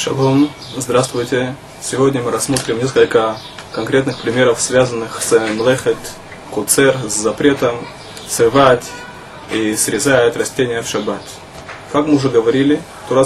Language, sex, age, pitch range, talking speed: Russian, male, 20-39, 120-145 Hz, 115 wpm